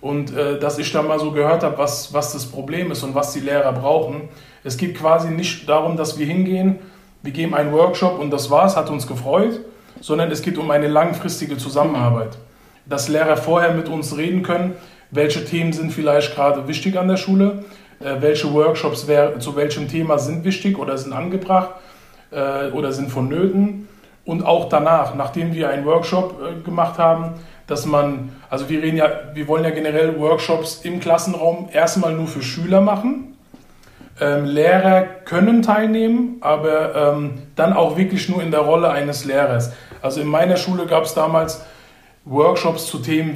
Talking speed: 180 wpm